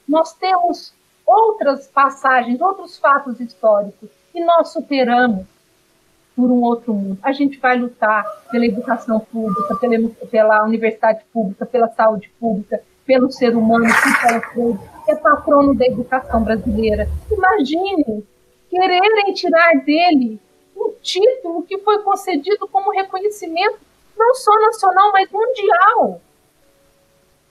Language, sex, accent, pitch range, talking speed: Portuguese, female, Brazilian, 230-355 Hz, 115 wpm